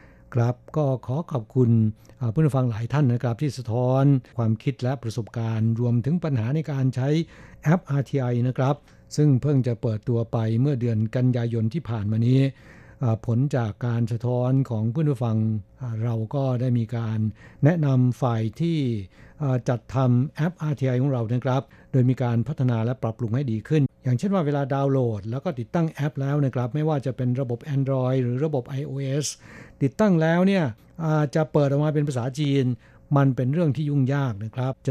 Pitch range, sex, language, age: 120-145 Hz, male, Thai, 60-79